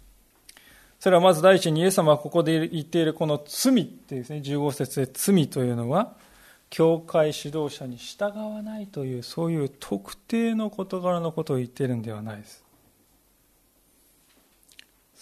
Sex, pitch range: male, 140-200 Hz